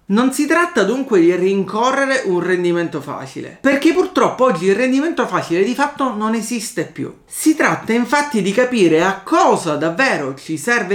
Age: 40-59